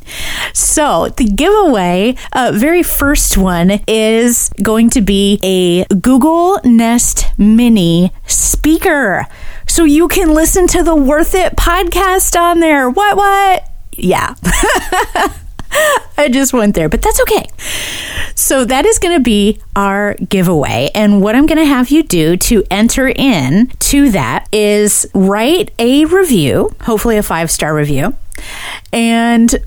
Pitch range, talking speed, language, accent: 180-275 Hz, 135 wpm, English, American